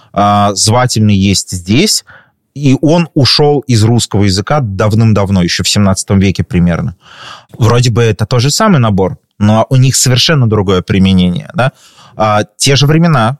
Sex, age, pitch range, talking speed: male, 20-39, 100-130 Hz, 145 wpm